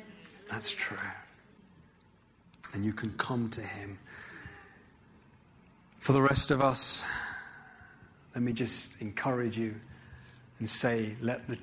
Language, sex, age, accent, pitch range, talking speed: English, male, 30-49, British, 115-125 Hz, 115 wpm